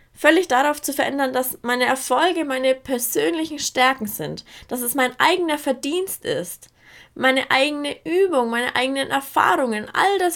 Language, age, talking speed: German, 20-39, 145 wpm